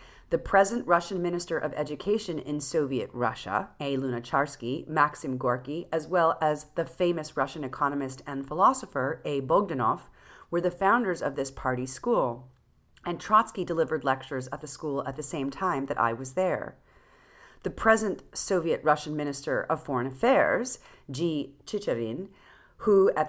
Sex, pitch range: female, 135-185 Hz